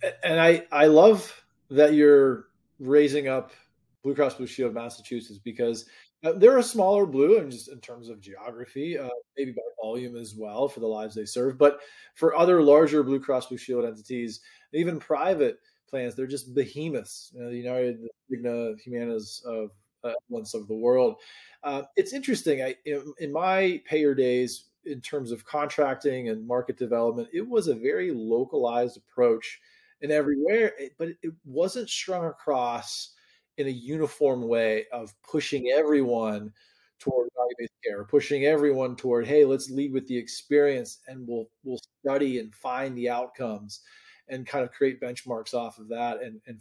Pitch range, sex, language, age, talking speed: 120-160 Hz, male, English, 20-39, 165 wpm